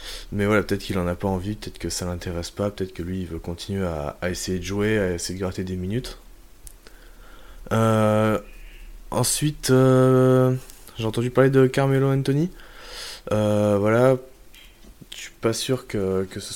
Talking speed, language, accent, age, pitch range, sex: 175 wpm, French, French, 20-39, 95-115 Hz, male